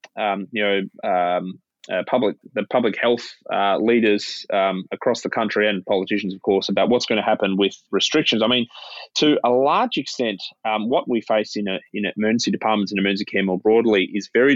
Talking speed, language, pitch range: 200 wpm, English, 95-110 Hz